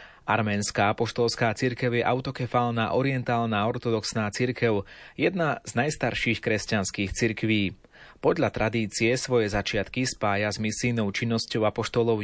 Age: 30-49